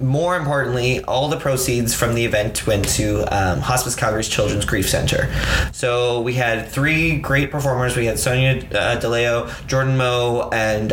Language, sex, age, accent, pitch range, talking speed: English, male, 20-39, American, 105-130 Hz, 160 wpm